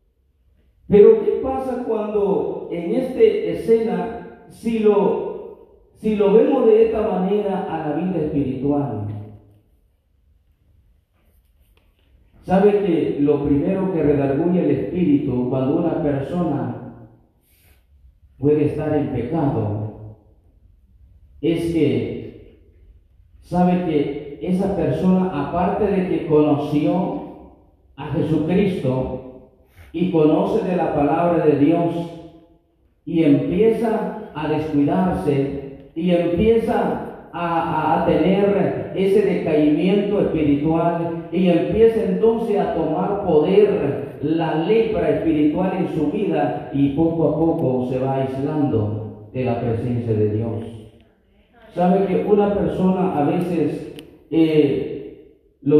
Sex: male